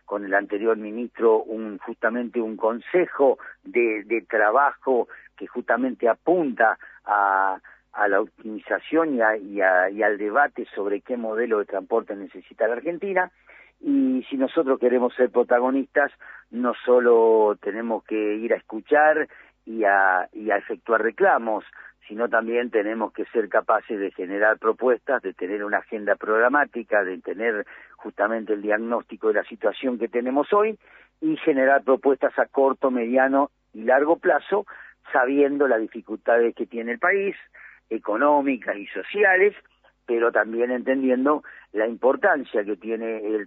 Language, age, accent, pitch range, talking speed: Spanish, 50-69, Argentinian, 110-135 Hz, 135 wpm